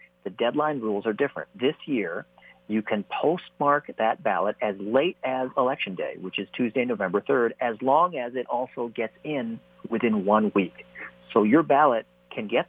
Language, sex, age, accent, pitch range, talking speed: English, male, 40-59, American, 95-125 Hz, 175 wpm